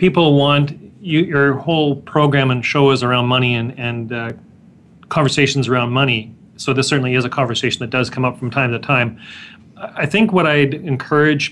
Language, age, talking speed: English, 40-59, 180 wpm